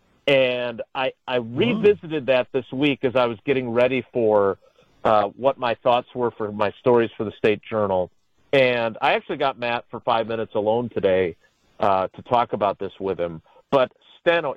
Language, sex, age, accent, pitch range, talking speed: English, male, 40-59, American, 120-160 Hz, 180 wpm